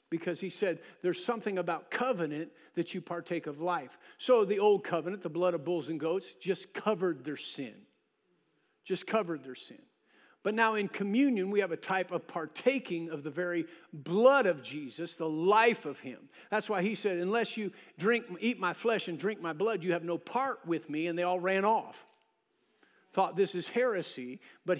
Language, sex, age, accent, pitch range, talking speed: English, male, 50-69, American, 170-215 Hz, 195 wpm